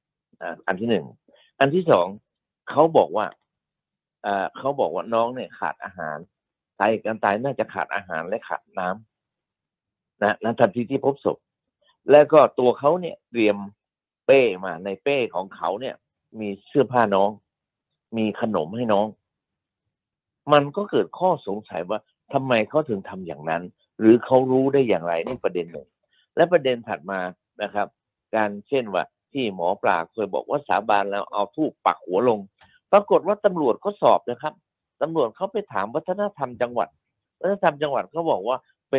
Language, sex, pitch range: Thai, male, 100-140 Hz